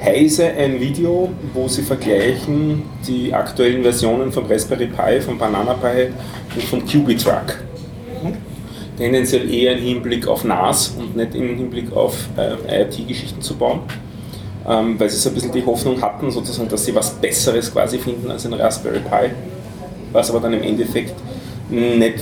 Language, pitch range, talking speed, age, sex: German, 105-125 Hz, 160 wpm, 30-49, male